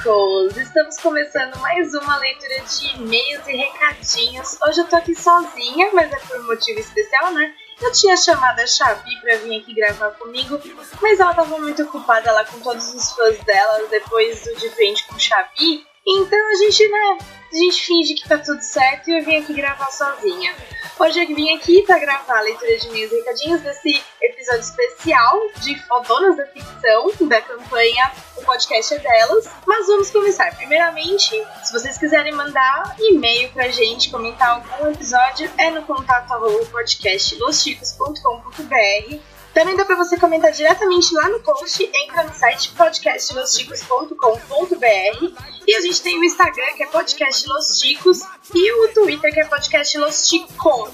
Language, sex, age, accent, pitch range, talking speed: Portuguese, female, 10-29, Brazilian, 260-365 Hz, 160 wpm